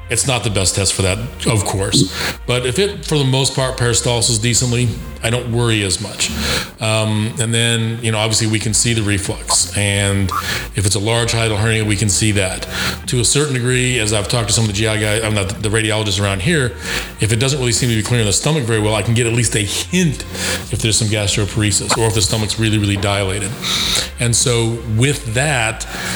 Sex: male